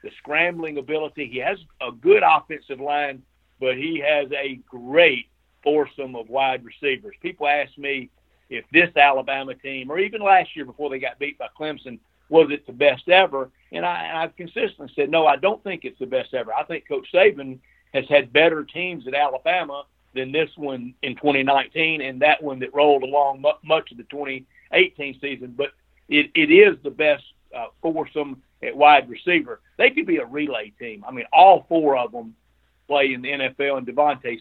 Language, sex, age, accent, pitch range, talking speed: English, male, 50-69, American, 135-190 Hz, 185 wpm